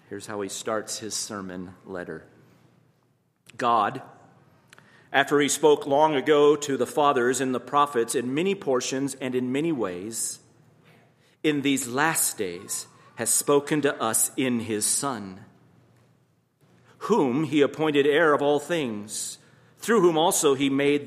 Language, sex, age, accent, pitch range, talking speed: English, male, 40-59, American, 115-145 Hz, 140 wpm